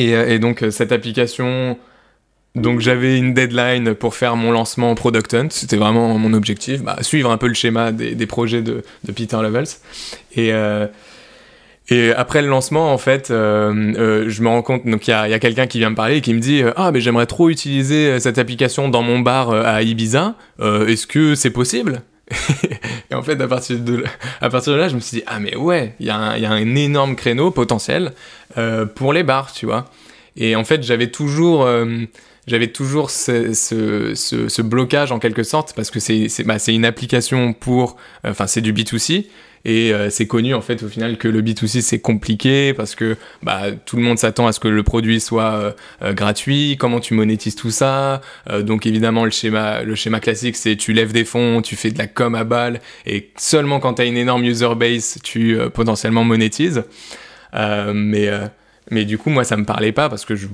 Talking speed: 220 wpm